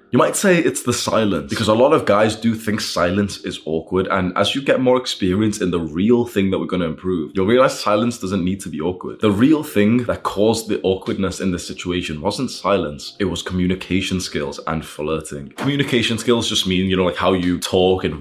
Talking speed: 220 wpm